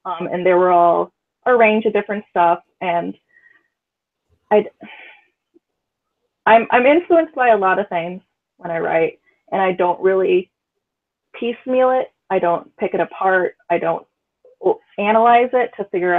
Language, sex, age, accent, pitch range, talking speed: English, female, 20-39, American, 180-240 Hz, 145 wpm